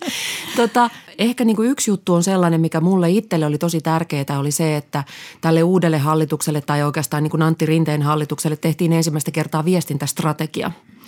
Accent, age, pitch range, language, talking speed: native, 30-49, 150-170 Hz, Finnish, 140 wpm